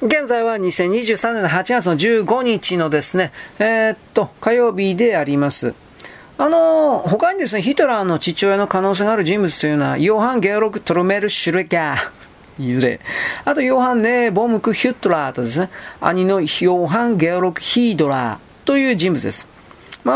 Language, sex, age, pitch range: Japanese, male, 40-59, 170-245 Hz